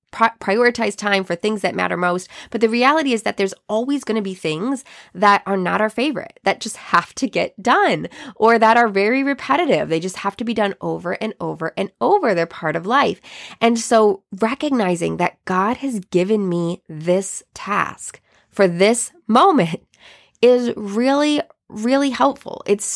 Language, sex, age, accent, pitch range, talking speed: English, female, 20-39, American, 195-270 Hz, 175 wpm